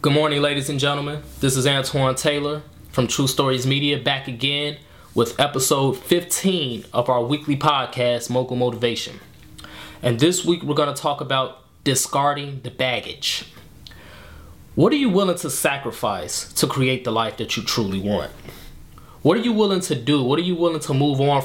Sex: male